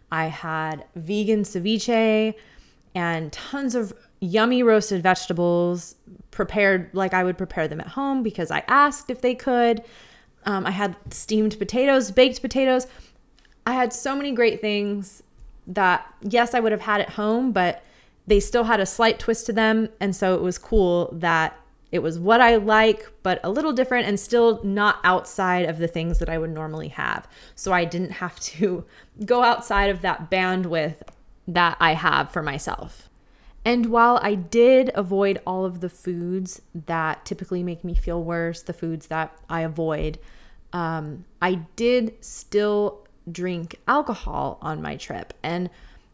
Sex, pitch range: female, 175-225 Hz